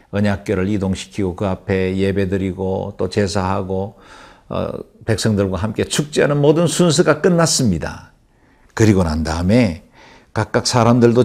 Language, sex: Korean, male